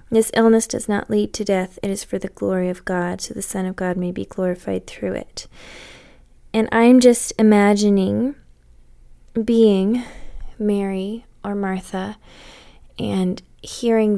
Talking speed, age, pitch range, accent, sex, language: 145 wpm, 20-39, 180-205 Hz, American, female, English